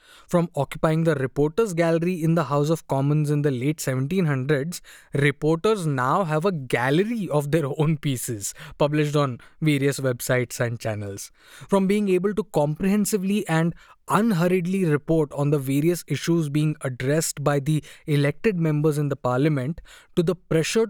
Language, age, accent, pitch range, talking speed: English, 20-39, Indian, 145-185 Hz, 150 wpm